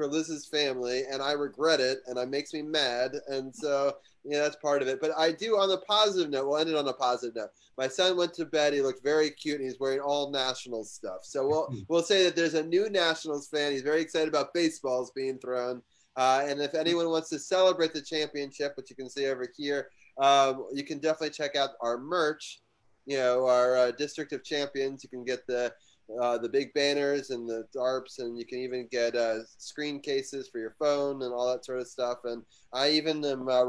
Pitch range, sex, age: 125-150 Hz, male, 30-49